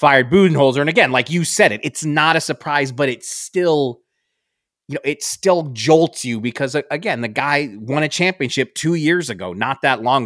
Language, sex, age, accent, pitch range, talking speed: English, male, 30-49, American, 125-155 Hz, 200 wpm